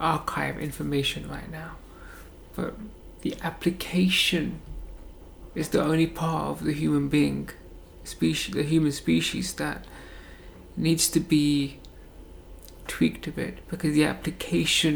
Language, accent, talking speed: English, British, 115 wpm